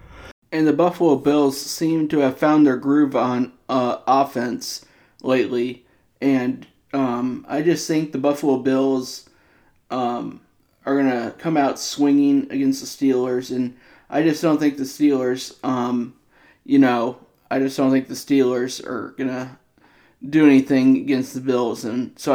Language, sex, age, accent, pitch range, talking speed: English, male, 30-49, American, 130-150 Hz, 155 wpm